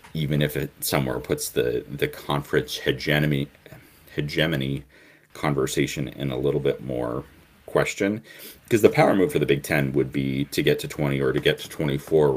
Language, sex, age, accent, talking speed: English, male, 30-49, American, 175 wpm